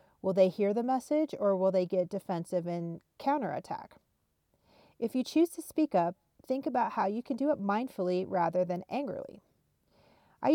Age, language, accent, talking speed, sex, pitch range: 40-59, English, American, 170 wpm, female, 180-215 Hz